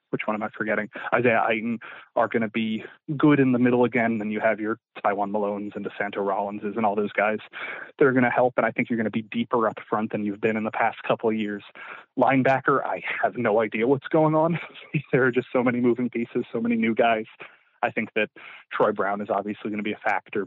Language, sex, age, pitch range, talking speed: English, male, 20-39, 110-130 Hz, 245 wpm